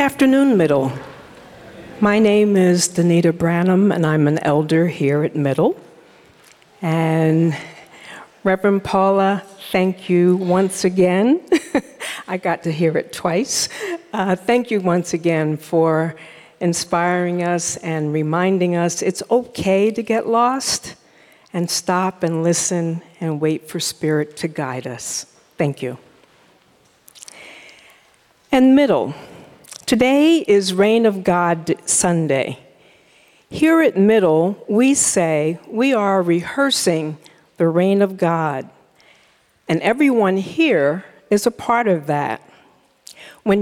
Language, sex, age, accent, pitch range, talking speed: English, female, 50-69, American, 165-215 Hz, 115 wpm